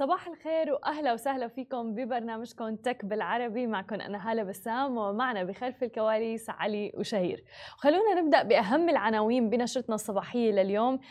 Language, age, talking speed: Arabic, 20-39, 135 wpm